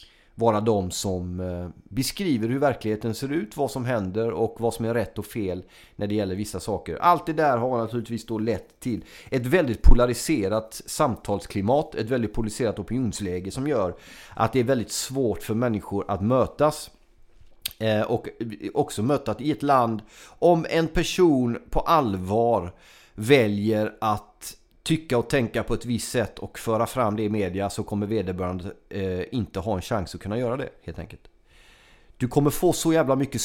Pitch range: 105-135 Hz